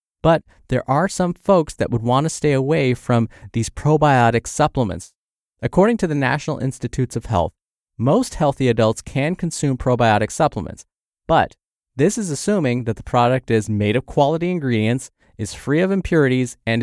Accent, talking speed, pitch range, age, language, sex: American, 165 wpm, 115-150 Hz, 20-39, English, male